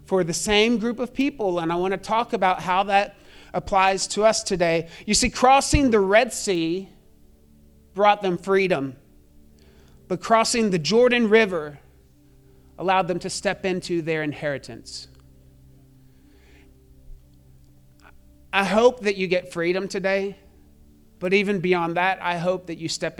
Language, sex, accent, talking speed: English, male, American, 140 wpm